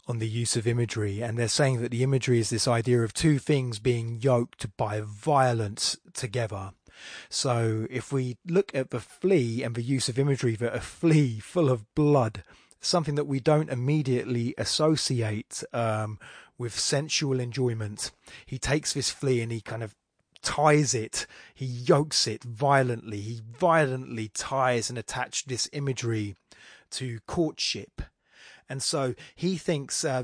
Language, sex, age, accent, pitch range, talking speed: English, male, 30-49, British, 115-140 Hz, 155 wpm